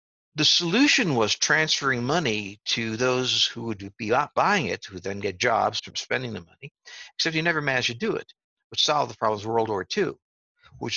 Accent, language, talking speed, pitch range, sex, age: American, English, 195 wpm, 110-160 Hz, male, 60-79